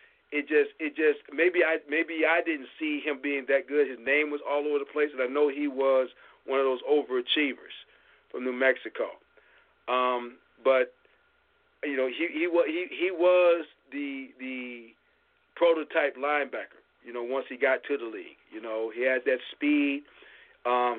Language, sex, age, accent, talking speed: English, male, 40-59, American, 175 wpm